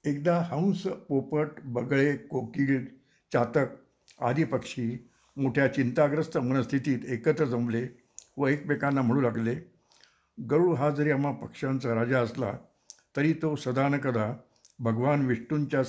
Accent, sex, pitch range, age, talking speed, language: native, male, 125-150 Hz, 60-79, 110 wpm, Marathi